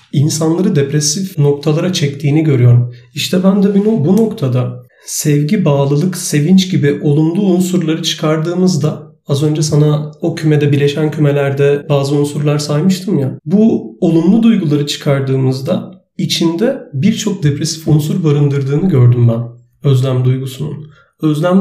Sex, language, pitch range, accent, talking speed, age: male, Turkish, 140-180 Hz, native, 120 wpm, 40-59